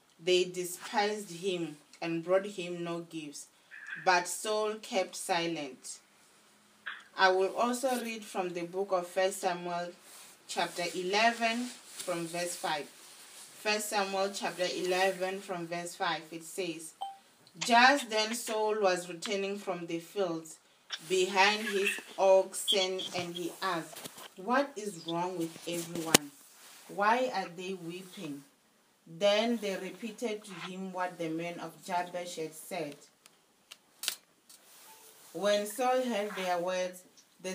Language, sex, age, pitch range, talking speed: English, female, 30-49, 175-210 Hz, 125 wpm